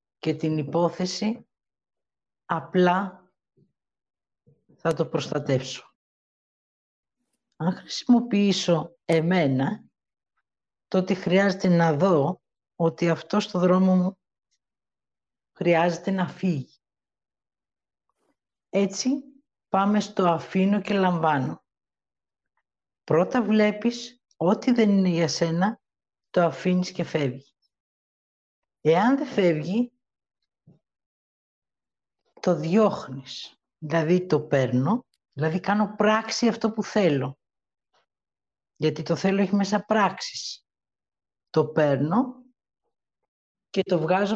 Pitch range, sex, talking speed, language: 155-210 Hz, female, 85 wpm, Greek